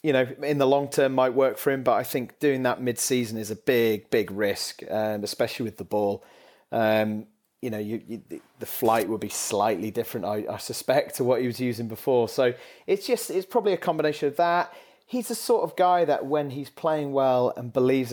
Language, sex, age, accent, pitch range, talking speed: English, male, 30-49, British, 115-140 Hz, 215 wpm